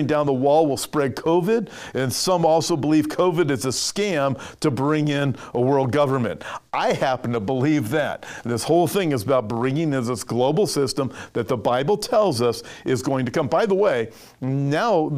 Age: 50-69